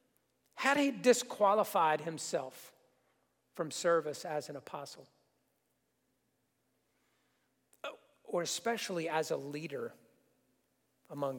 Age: 50-69